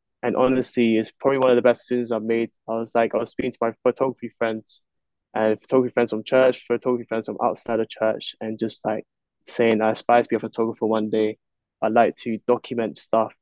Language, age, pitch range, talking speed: English, 10-29, 110-125 Hz, 225 wpm